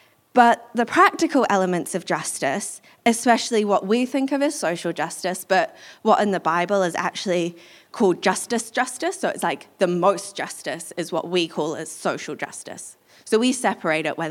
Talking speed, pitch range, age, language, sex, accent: 175 wpm, 175-215 Hz, 20-39, English, female, British